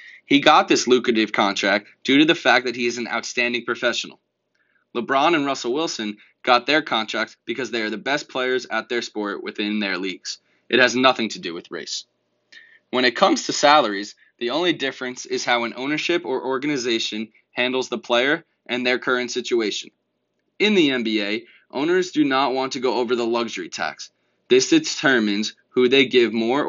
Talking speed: 180 wpm